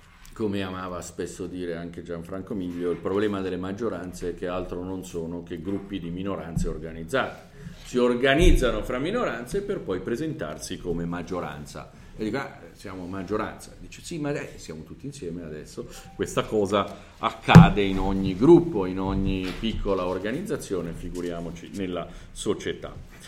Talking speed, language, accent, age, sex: 145 wpm, Italian, native, 40-59, male